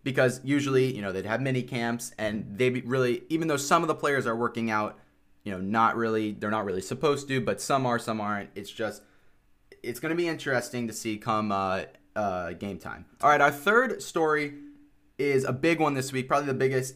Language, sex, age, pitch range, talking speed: English, male, 20-39, 110-140 Hz, 220 wpm